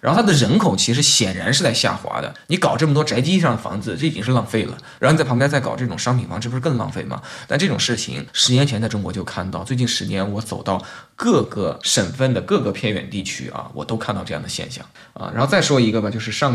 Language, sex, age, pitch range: Chinese, male, 20-39, 105-125 Hz